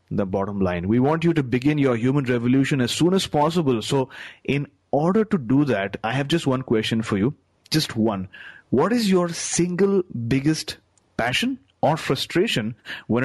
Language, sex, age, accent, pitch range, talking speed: English, male, 30-49, Indian, 115-150 Hz, 175 wpm